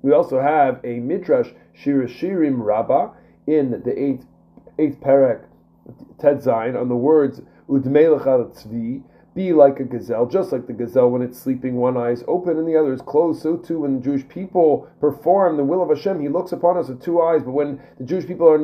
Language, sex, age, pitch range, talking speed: English, male, 30-49, 135-180 Hz, 190 wpm